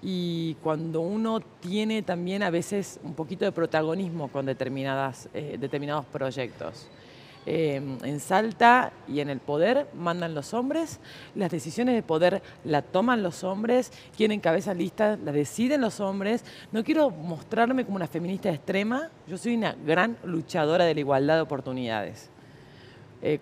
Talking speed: 150 wpm